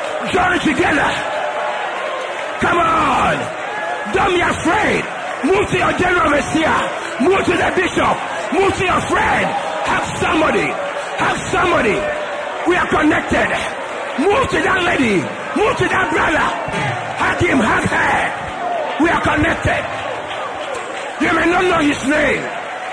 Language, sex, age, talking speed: English, male, 40-59, 125 wpm